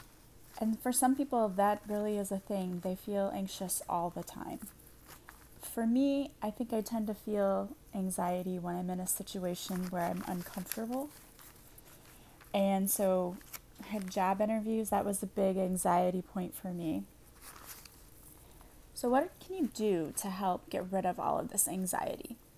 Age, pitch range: 20-39, 190-230 Hz